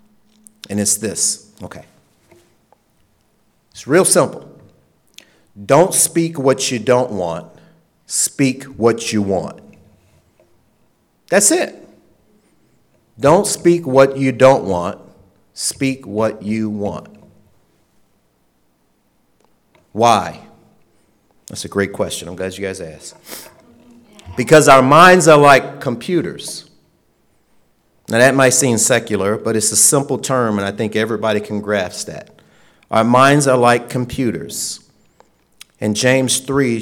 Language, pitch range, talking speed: English, 105-145 Hz, 115 wpm